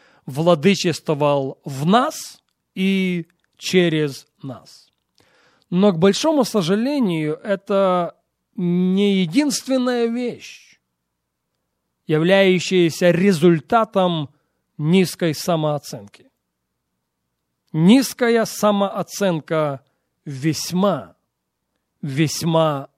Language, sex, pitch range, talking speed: Russian, male, 160-220 Hz, 55 wpm